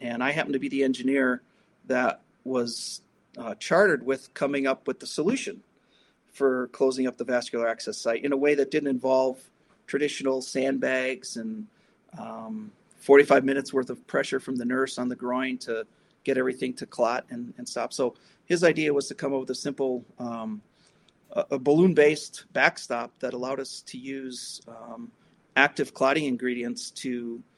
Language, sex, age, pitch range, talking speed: English, male, 40-59, 125-145 Hz, 170 wpm